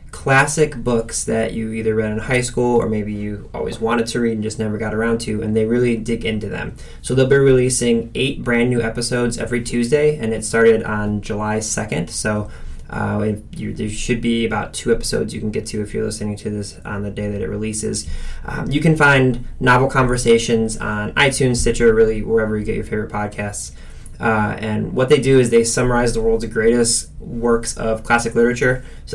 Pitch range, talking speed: 110-130 Hz, 205 wpm